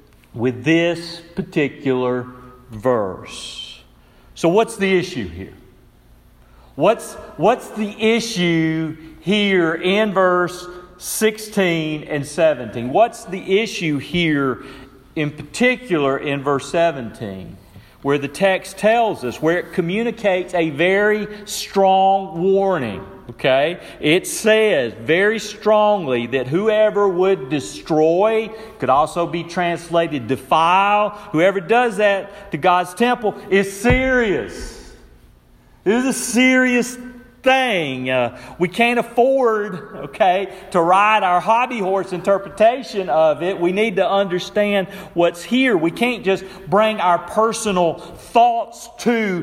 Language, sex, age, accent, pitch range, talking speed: English, male, 50-69, American, 155-215 Hz, 115 wpm